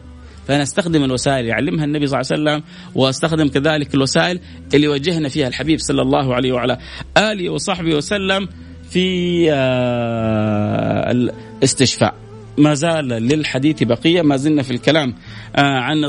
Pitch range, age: 125-180 Hz, 30-49